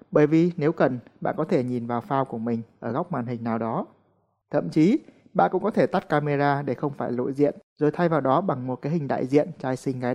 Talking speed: 260 wpm